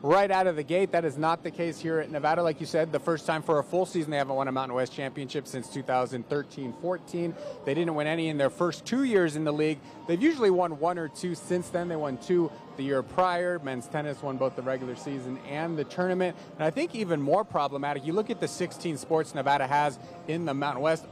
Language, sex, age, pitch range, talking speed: English, male, 30-49, 140-170 Hz, 245 wpm